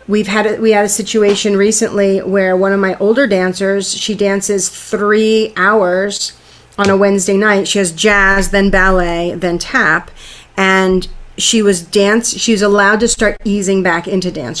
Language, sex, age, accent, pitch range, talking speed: English, female, 40-59, American, 180-205 Hz, 170 wpm